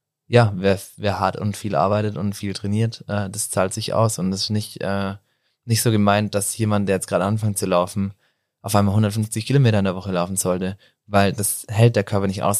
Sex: male